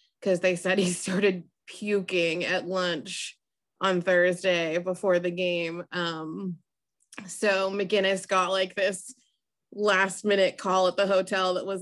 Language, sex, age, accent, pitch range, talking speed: English, female, 20-39, American, 185-215 Hz, 135 wpm